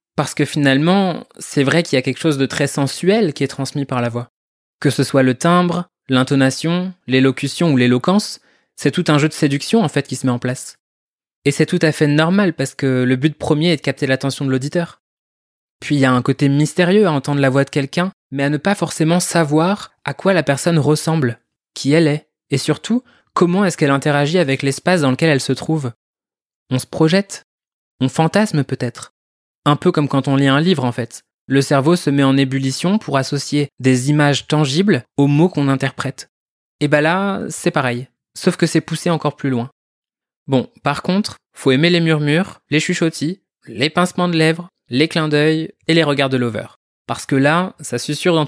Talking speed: 210 wpm